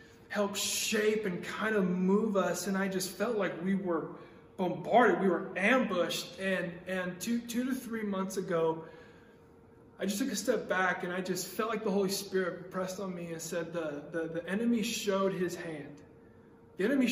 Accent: American